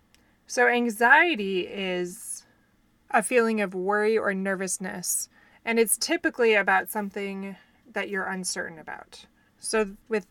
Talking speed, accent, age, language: 115 wpm, American, 20-39, English